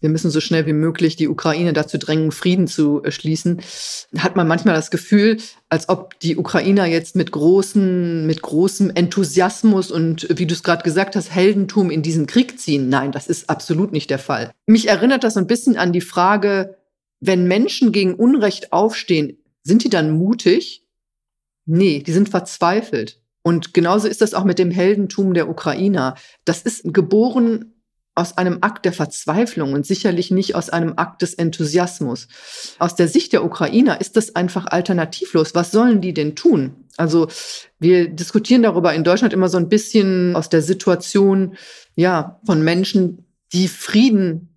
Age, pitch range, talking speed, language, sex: 40-59, 165-200 Hz, 165 wpm, German, female